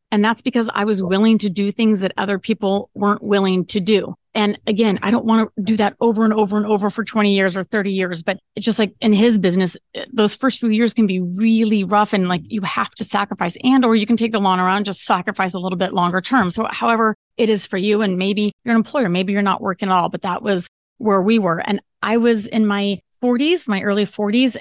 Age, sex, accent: 30-49, female, American